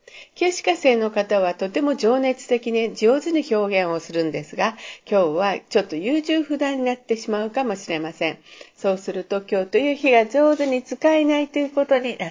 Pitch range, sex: 195-275 Hz, female